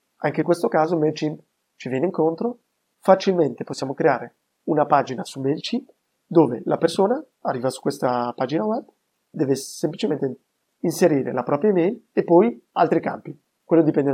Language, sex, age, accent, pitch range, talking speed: Italian, male, 30-49, native, 135-165 Hz, 150 wpm